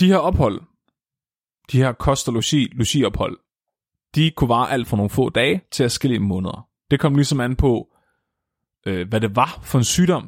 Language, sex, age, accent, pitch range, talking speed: Danish, male, 30-49, native, 110-145 Hz, 195 wpm